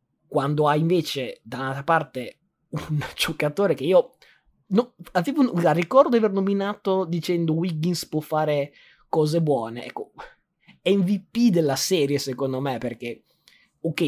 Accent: native